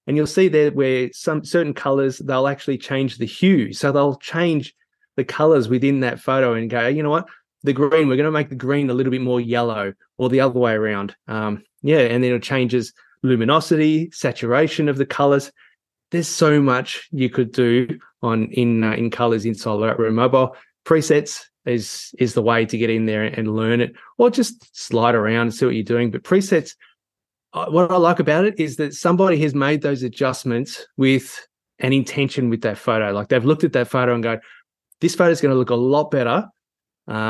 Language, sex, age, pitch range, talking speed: English, male, 20-39, 120-155 Hz, 210 wpm